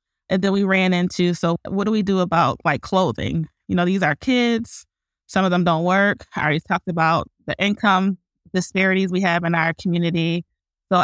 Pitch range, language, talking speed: 170-205 Hz, English, 195 wpm